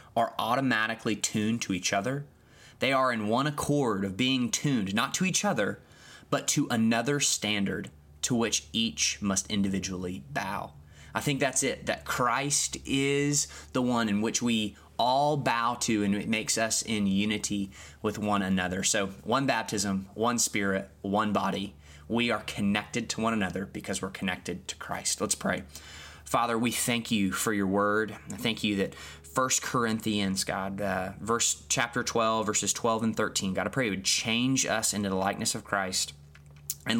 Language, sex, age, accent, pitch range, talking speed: English, male, 20-39, American, 95-115 Hz, 175 wpm